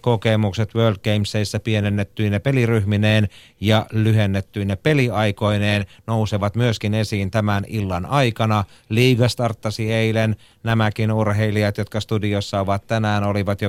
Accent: native